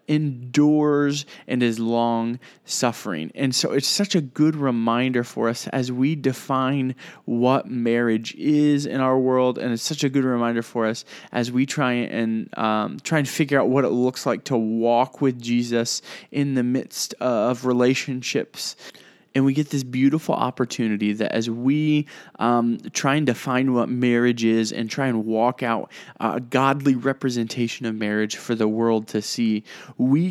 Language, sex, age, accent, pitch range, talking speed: English, male, 20-39, American, 120-150 Hz, 170 wpm